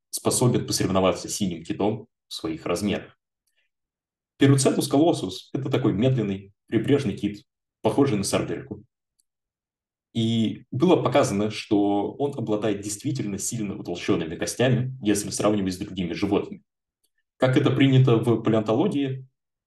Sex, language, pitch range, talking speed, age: male, Russian, 100-130 Hz, 115 wpm, 20-39